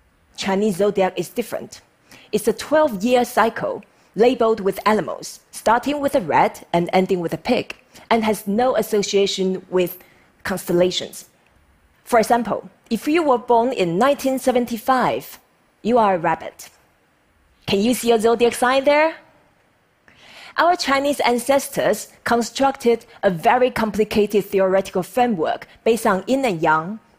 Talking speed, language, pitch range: 130 wpm, English, 195-250 Hz